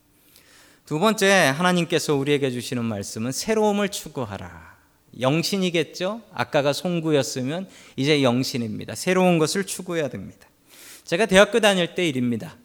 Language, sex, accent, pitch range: Korean, male, native, 135-220 Hz